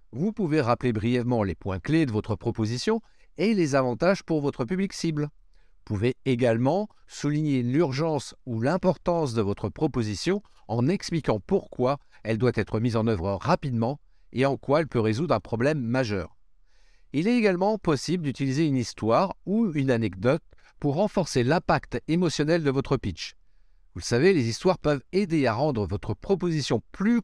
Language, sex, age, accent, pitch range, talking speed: French, male, 50-69, French, 115-165 Hz, 165 wpm